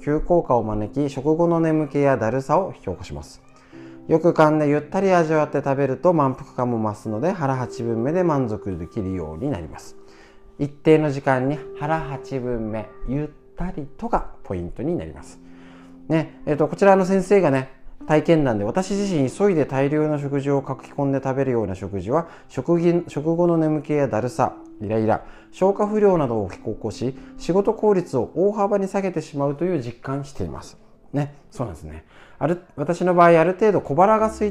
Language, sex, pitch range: Japanese, male, 115-175 Hz